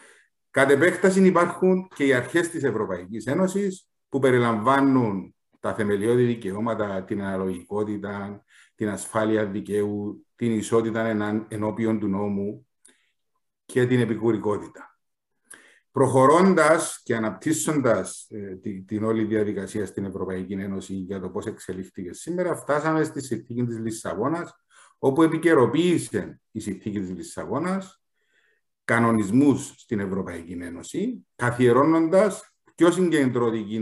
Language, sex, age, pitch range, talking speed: Greek, male, 50-69, 105-155 Hz, 105 wpm